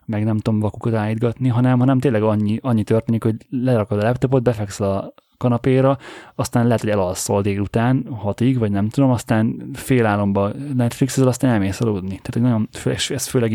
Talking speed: 180 wpm